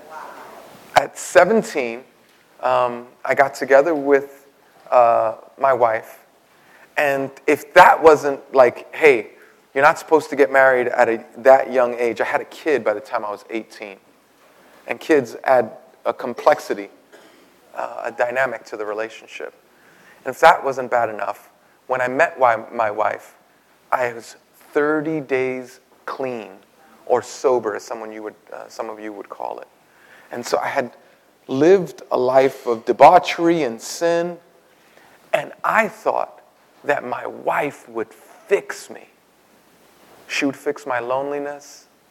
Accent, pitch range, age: American, 120-150 Hz, 30-49